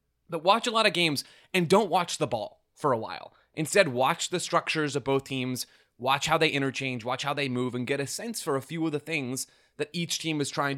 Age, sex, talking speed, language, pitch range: 20-39, male, 245 wpm, English, 125-160 Hz